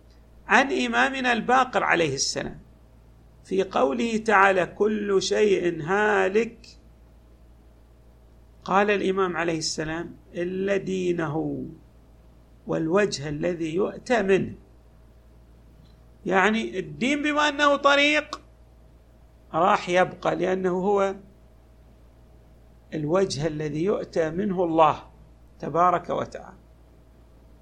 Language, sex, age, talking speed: Arabic, male, 50-69, 80 wpm